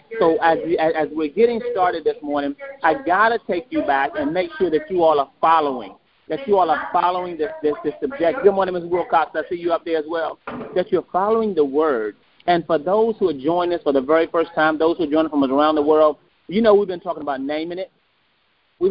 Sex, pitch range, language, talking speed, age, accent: male, 155-215 Hz, English, 245 wpm, 30-49, American